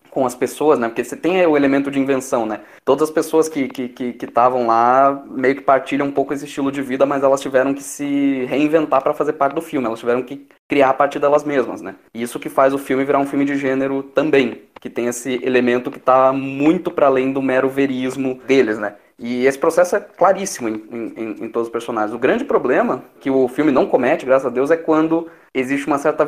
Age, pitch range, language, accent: 20-39, 120-140 Hz, Portuguese, Brazilian